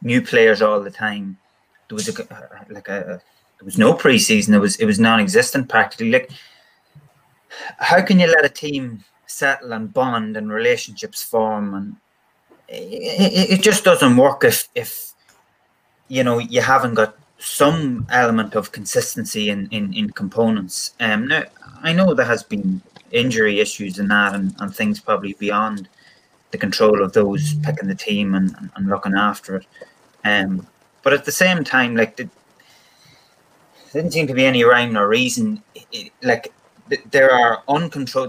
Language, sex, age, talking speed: English, male, 20-39, 170 wpm